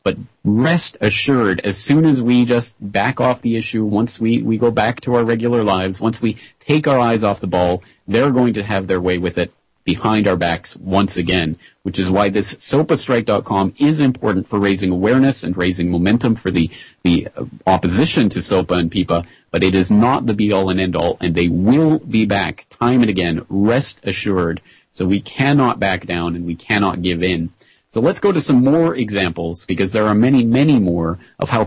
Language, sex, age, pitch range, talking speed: English, male, 30-49, 90-120 Hz, 200 wpm